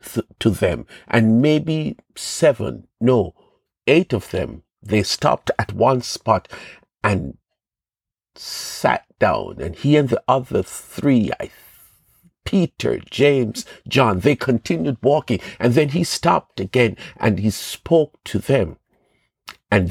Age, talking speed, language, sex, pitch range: 50-69, 125 wpm, English, male, 110-160 Hz